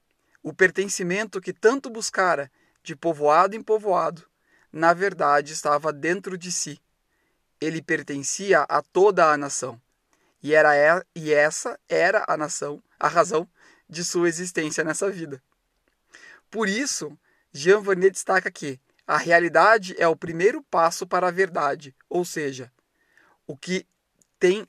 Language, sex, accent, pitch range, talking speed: Portuguese, male, Brazilian, 155-200 Hz, 135 wpm